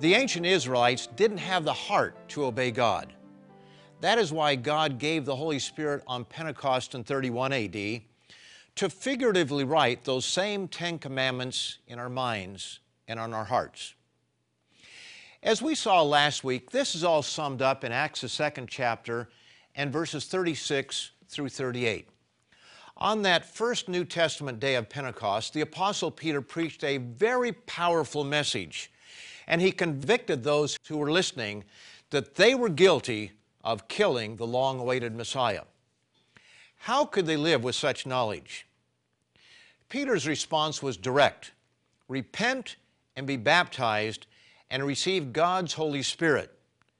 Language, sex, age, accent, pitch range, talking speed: English, male, 50-69, American, 125-170 Hz, 140 wpm